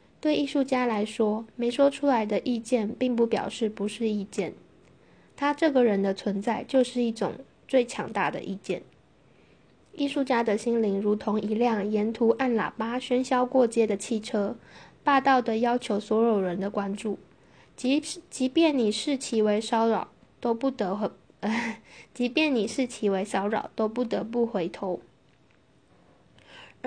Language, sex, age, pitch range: English, female, 10-29, 210-250 Hz